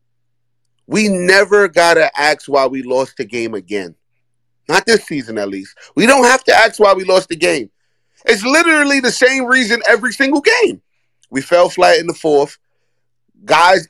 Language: English